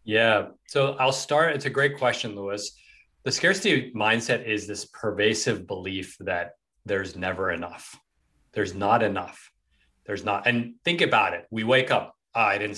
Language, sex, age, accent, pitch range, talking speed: English, male, 30-49, American, 105-125 Hz, 165 wpm